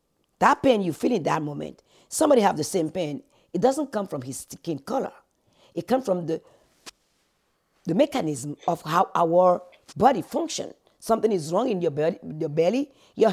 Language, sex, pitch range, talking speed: English, female, 170-255 Hz, 170 wpm